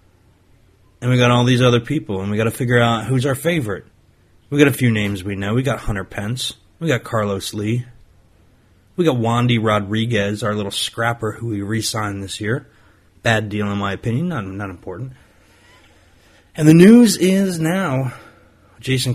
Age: 30-49